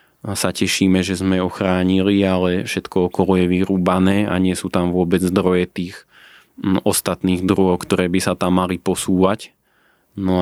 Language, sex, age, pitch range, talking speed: Slovak, male, 20-39, 90-95 Hz, 155 wpm